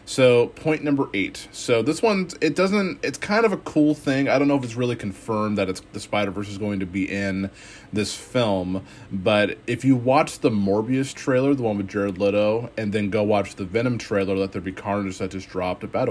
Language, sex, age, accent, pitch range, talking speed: English, male, 30-49, American, 100-125 Hz, 225 wpm